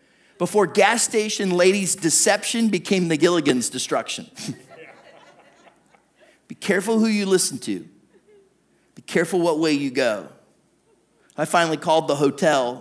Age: 30-49